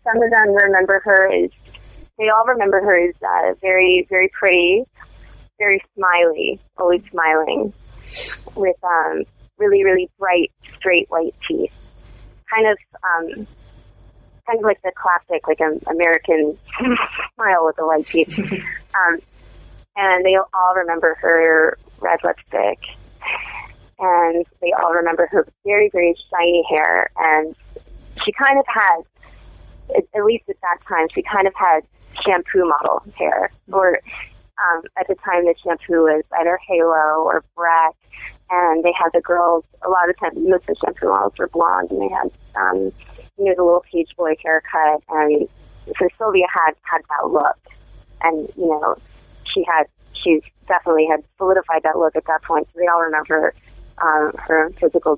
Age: 20-39